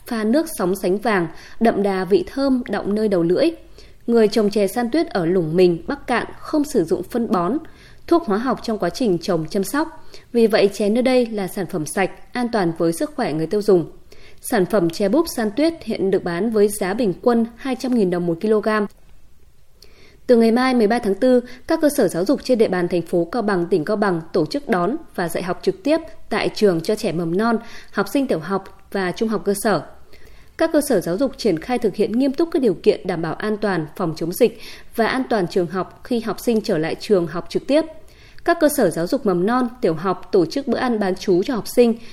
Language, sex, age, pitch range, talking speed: Vietnamese, female, 20-39, 190-255 Hz, 240 wpm